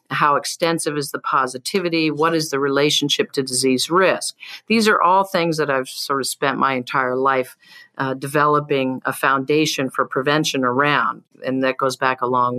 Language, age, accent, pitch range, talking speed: English, 50-69, American, 135-170 Hz, 175 wpm